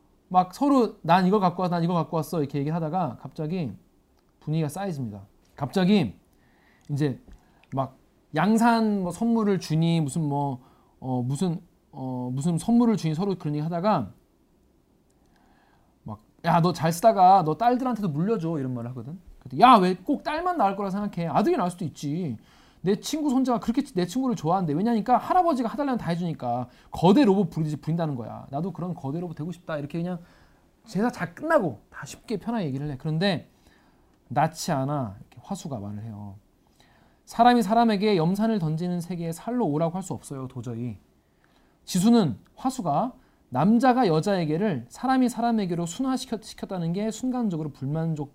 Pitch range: 145-210 Hz